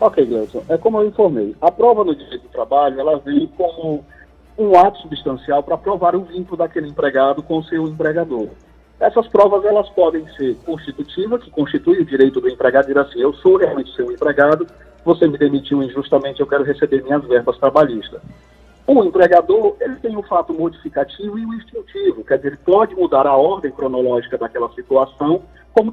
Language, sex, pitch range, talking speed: Portuguese, male, 140-220 Hz, 185 wpm